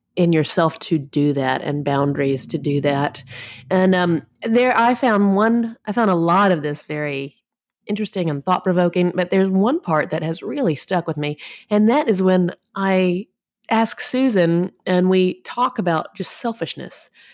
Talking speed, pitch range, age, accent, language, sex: 175 wpm, 160-205 Hz, 30-49, American, English, female